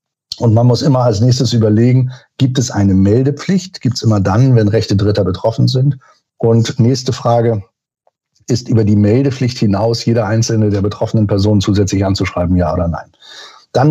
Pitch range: 115-145 Hz